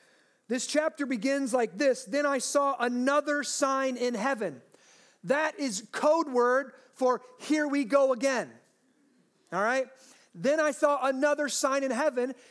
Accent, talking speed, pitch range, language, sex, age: American, 145 wpm, 255-295 Hz, English, male, 40-59